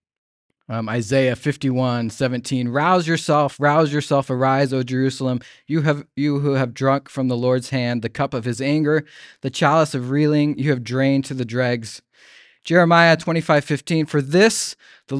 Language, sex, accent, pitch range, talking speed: English, male, American, 125-155 Hz, 175 wpm